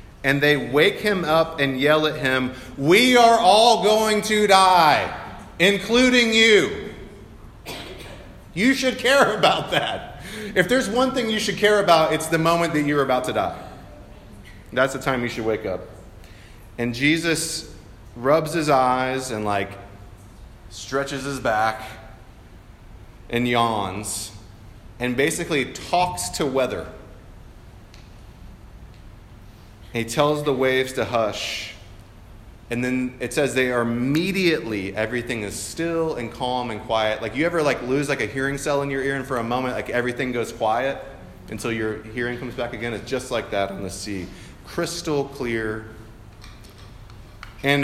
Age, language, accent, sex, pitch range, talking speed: 30-49, English, American, male, 105-145 Hz, 150 wpm